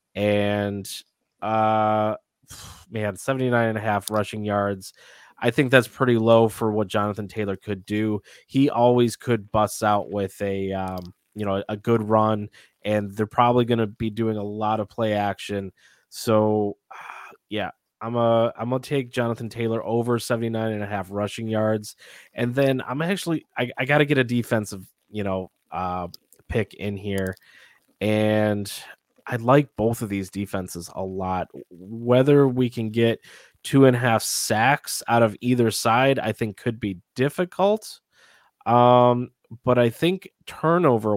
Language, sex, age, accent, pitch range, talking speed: English, male, 20-39, American, 105-120 Hz, 160 wpm